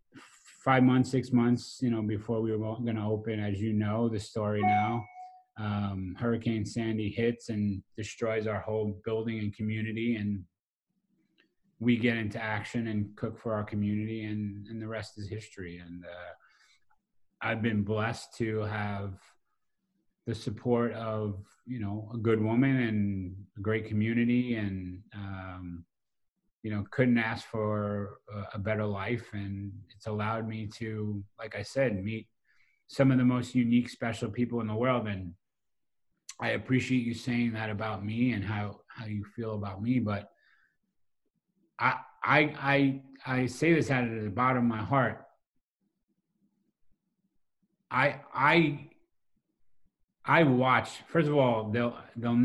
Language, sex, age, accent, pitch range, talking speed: English, male, 30-49, American, 105-120 Hz, 150 wpm